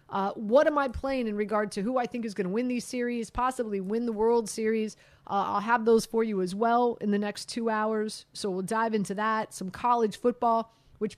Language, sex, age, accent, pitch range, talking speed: English, female, 30-49, American, 195-245 Hz, 235 wpm